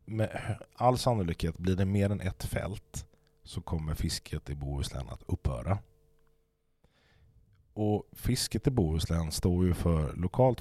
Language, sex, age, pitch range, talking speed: Swedish, male, 30-49, 75-105 Hz, 135 wpm